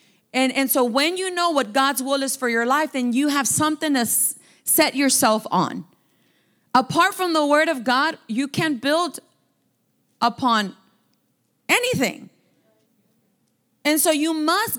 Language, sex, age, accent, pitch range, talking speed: English, female, 30-49, American, 255-320 Hz, 150 wpm